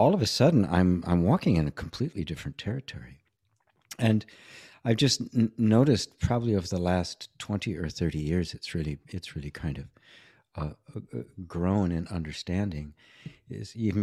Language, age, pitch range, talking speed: English, 60-79, 85-110 Hz, 165 wpm